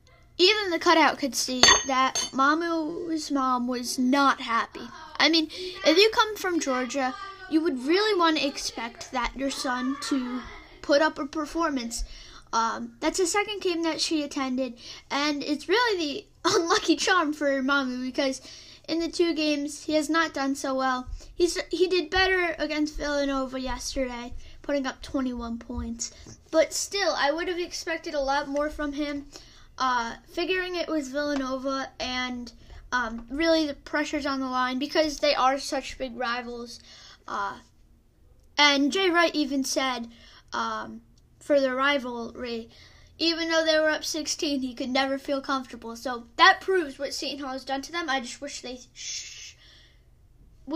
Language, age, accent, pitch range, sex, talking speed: English, 10-29, American, 260-330 Hz, female, 160 wpm